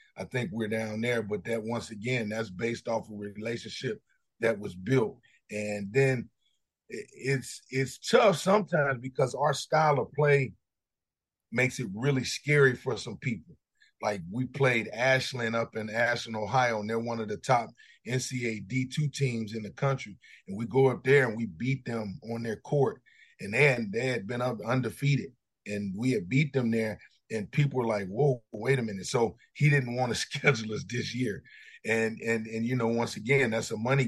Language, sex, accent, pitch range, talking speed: English, male, American, 110-135 Hz, 190 wpm